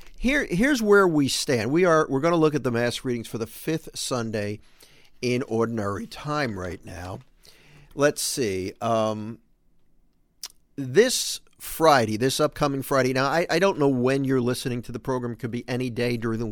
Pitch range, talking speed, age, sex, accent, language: 110-145 Hz, 180 wpm, 50-69, male, American, English